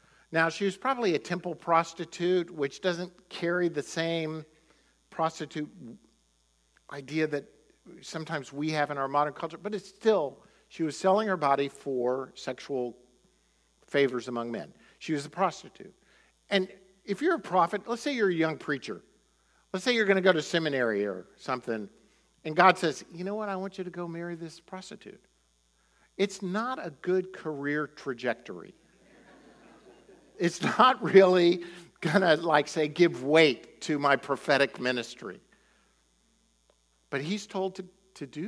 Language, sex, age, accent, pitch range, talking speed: English, male, 50-69, American, 140-195 Hz, 155 wpm